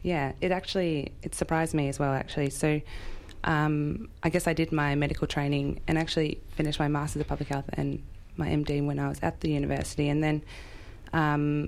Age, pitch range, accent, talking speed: 20-39, 135-150 Hz, Australian, 195 wpm